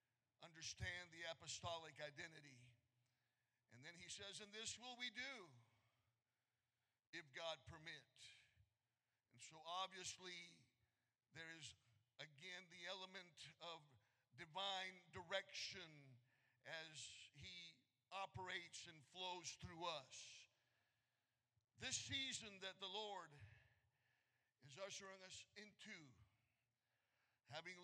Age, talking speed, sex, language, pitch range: 50-69, 95 wpm, male, English, 120-180 Hz